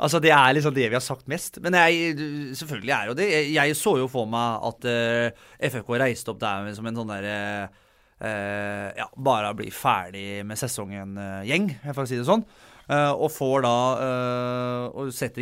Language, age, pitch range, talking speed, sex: English, 30-49, 115-155 Hz, 200 wpm, male